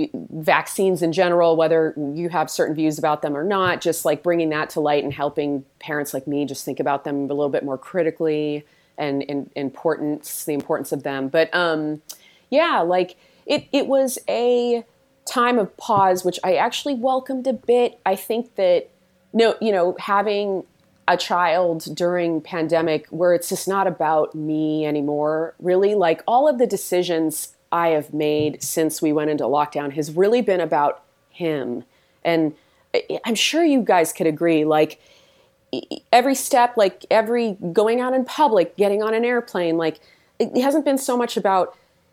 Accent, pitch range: American, 155-195 Hz